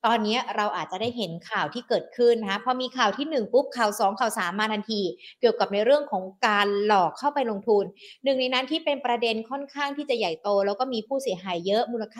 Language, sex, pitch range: Thai, female, 205-265 Hz